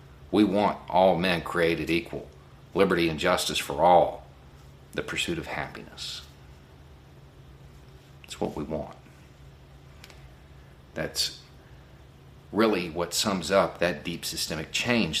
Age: 50-69